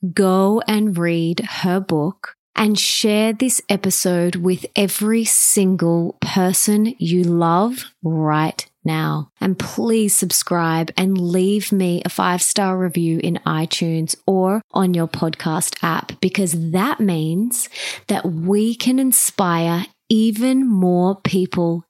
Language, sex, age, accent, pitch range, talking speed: English, female, 20-39, Australian, 170-215 Hz, 120 wpm